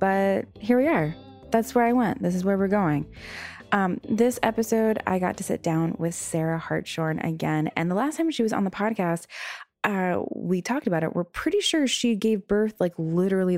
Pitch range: 160-220 Hz